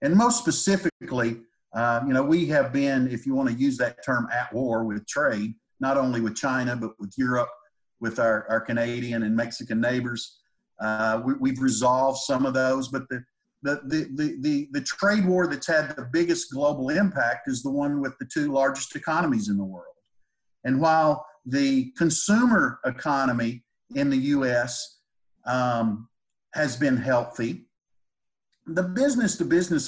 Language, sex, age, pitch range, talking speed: English, male, 50-69, 125-160 Hz, 160 wpm